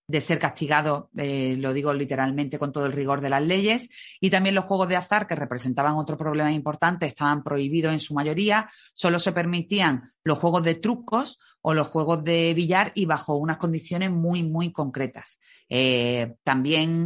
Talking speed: 180 wpm